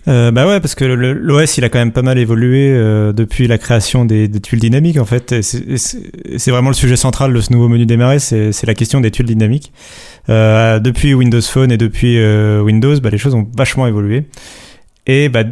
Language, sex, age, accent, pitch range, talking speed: French, male, 30-49, French, 110-135 Hz, 245 wpm